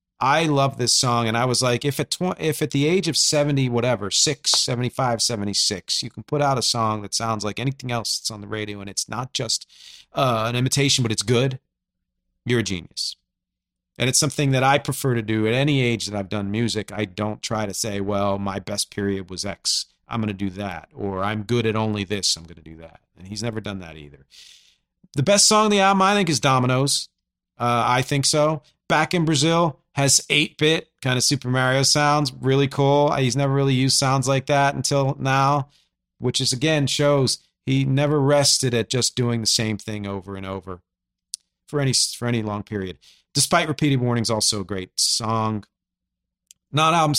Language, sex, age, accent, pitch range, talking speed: English, male, 40-59, American, 110-145 Hz, 205 wpm